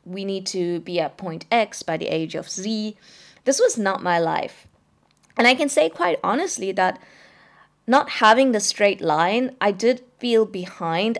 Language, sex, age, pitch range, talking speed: English, female, 20-39, 175-230 Hz, 175 wpm